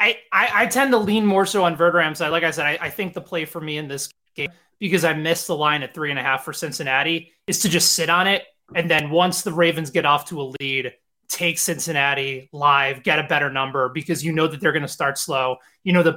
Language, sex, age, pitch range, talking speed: English, male, 20-39, 145-180 Hz, 260 wpm